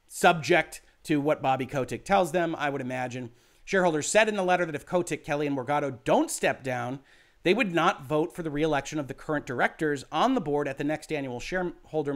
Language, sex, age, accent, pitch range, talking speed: English, male, 40-59, American, 145-195 Hz, 210 wpm